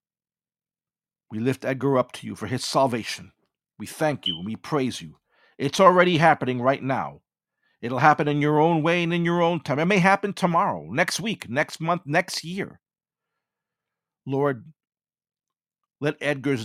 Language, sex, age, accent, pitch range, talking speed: English, male, 50-69, American, 115-155 Hz, 160 wpm